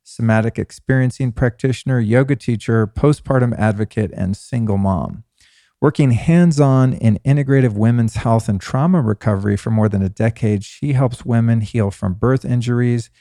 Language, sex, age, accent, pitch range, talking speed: English, male, 40-59, American, 105-125 Hz, 140 wpm